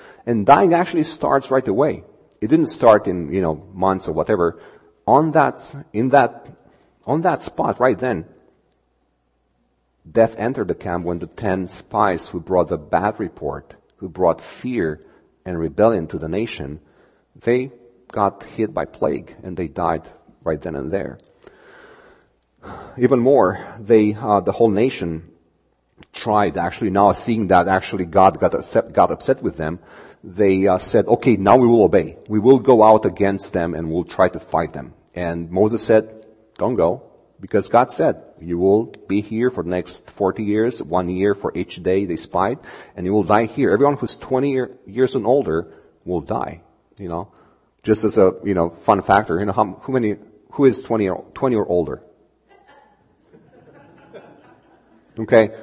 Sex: male